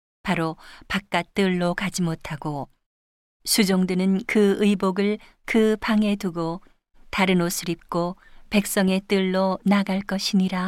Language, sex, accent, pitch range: Korean, female, native, 175-205 Hz